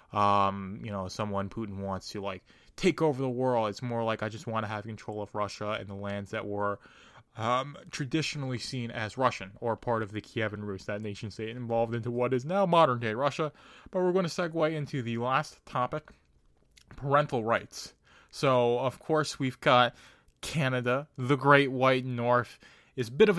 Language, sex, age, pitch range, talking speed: English, male, 20-39, 115-135 Hz, 190 wpm